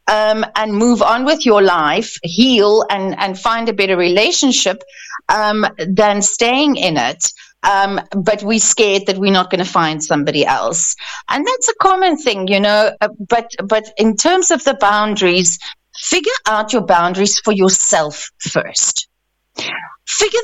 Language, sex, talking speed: English, female, 160 wpm